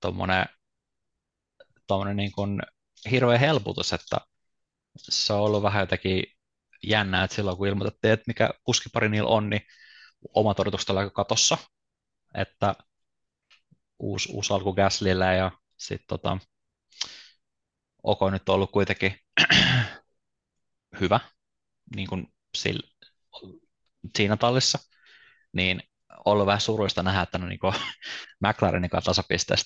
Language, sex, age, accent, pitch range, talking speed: Finnish, male, 20-39, native, 95-105 Hz, 105 wpm